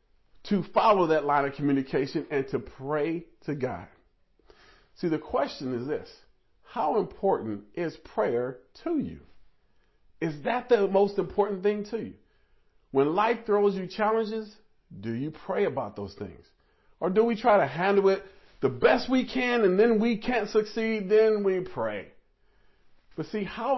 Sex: male